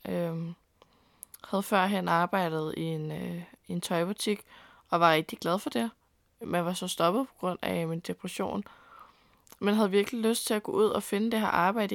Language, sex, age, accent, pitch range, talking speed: English, female, 20-39, Danish, 175-210 Hz, 190 wpm